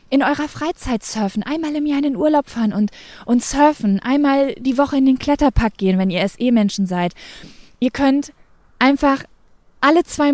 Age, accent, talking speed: 20-39, German, 175 wpm